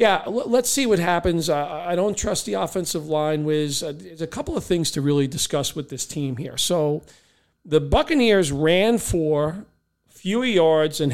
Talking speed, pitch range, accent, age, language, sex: 170 wpm, 145-180 Hz, American, 40-59, English, male